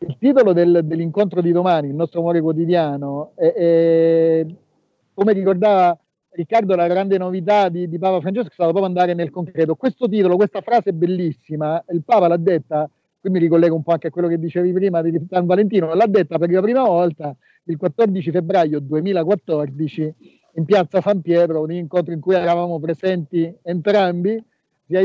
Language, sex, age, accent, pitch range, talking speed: Italian, male, 50-69, native, 165-200 Hz, 175 wpm